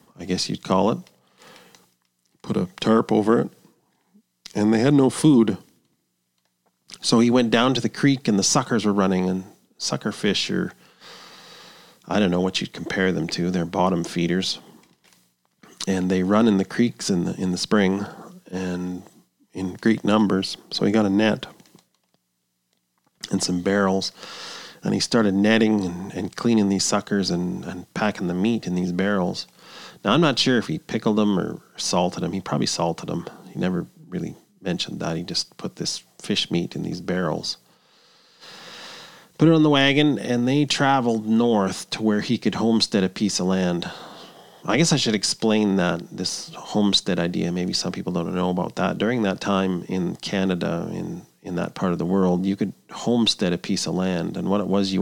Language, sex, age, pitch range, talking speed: English, male, 40-59, 90-110 Hz, 185 wpm